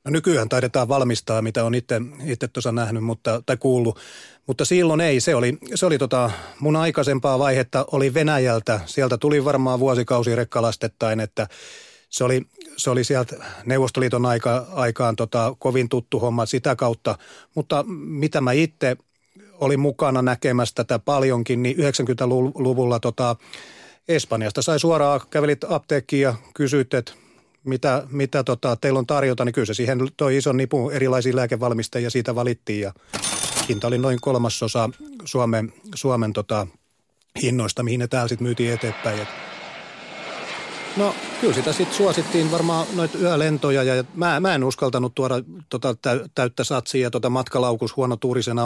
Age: 30-49